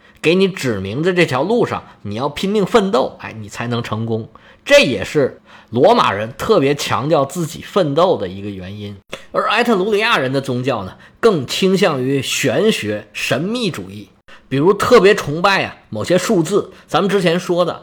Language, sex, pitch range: Chinese, male, 115-195 Hz